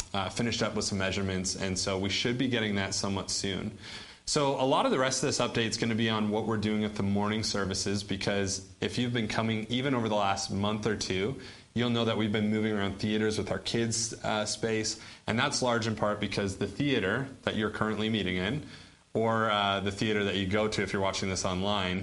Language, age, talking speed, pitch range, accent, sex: English, 30-49, 235 wpm, 100-120 Hz, American, male